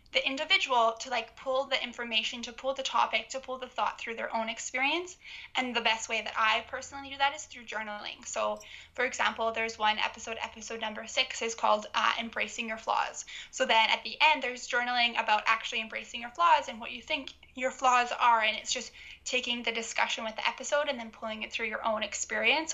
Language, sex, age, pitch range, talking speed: English, female, 10-29, 225-260 Hz, 215 wpm